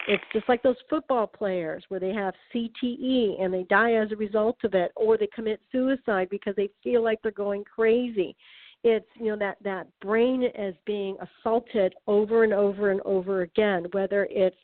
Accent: American